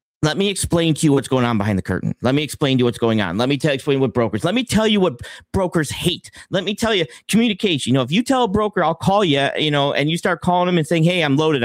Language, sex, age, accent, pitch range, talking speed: English, male, 40-59, American, 130-175 Hz, 310 wpm